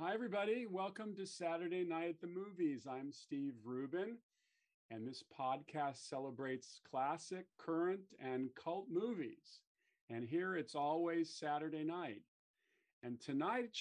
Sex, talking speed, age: male, 125 wpm, 40-59